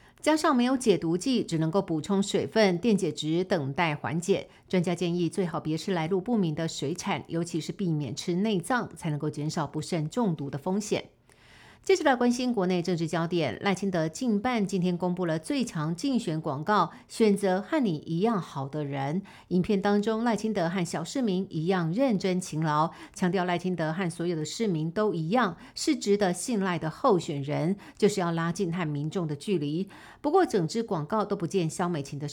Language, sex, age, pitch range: Chinese, female, 50-69, 165-205 Hz